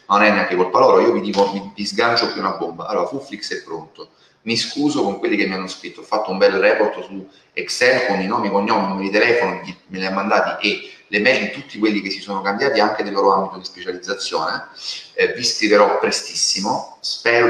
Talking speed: 235 wpm